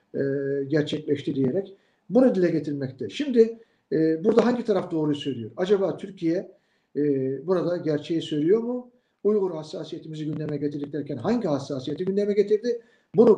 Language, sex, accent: Turkish, male, native